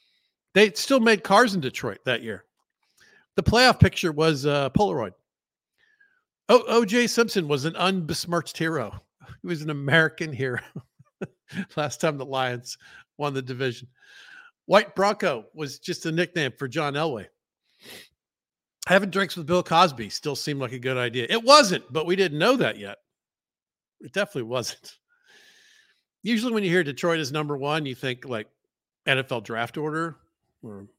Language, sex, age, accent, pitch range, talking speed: English, male, 50-69, American, 135-210 Hz, 150 wpm